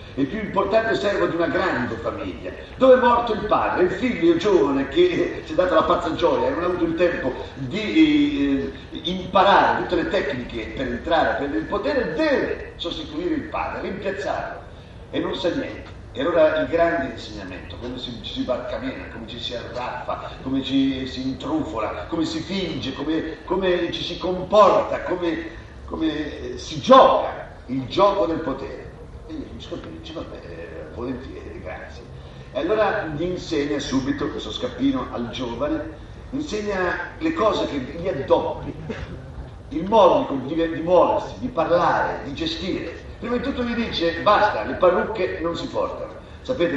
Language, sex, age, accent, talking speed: Italian, male, 50-69, native, 165 wpm